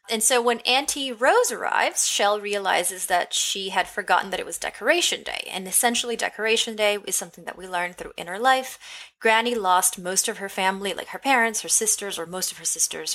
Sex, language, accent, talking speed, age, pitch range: female, English, American, 205 wpm, 20-39, 180-245 Hz